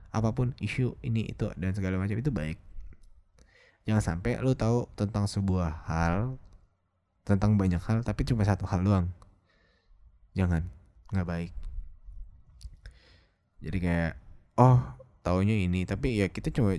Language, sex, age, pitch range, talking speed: English, male, 20-39, 85-100 Hz, 130 wpm